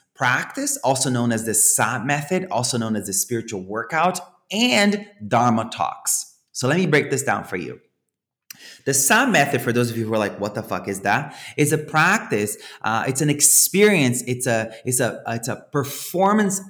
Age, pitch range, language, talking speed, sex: 30-49, 115-180 Hz, English, 190 wpm, male